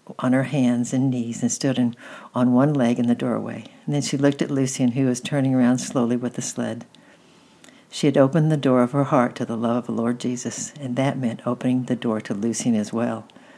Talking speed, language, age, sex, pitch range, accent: 230 wpm, English, 60-79, female, 120-140 Hz, American